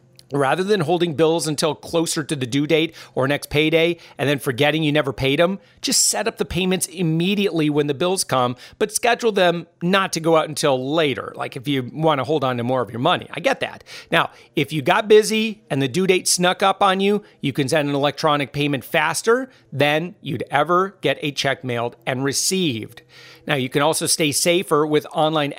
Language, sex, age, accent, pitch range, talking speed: English, male, 40-59, American, 140-180 Hz, 215 wpm